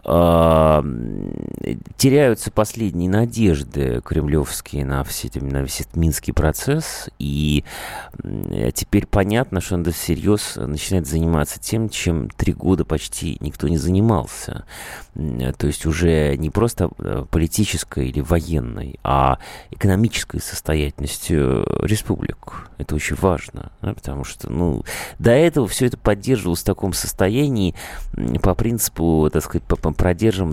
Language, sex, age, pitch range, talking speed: Russian, male, 30-49, 75-105 Hz, 110 wpm